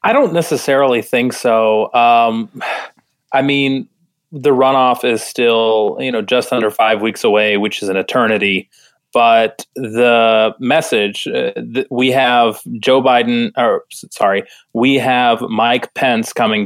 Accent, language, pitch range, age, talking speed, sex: American, English, 105-130 Hz, 20-39, 135 wpm, male